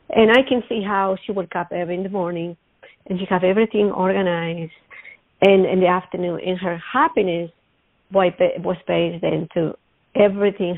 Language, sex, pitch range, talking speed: English, female, 175-215 Hz, 150 wpm